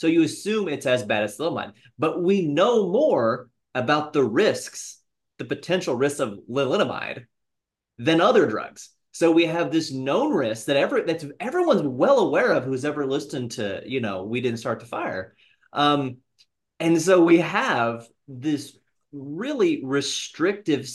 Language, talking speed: English, 160 wpm